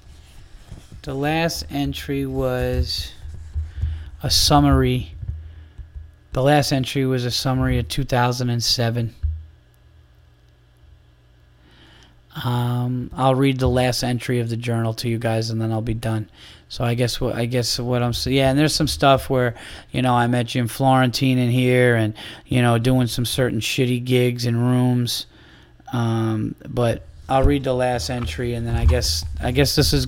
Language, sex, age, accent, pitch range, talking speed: English, male, 20-39, American, 115-130 Hz, 160 wpm